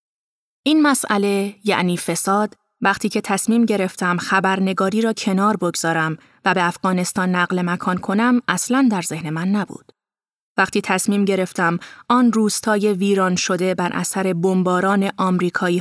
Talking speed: 130 wpm